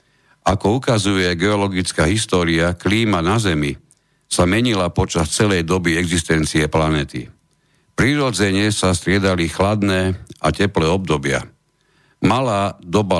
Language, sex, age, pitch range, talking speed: Slovak, male, 60-79, 85-115 Hz, 105 wpm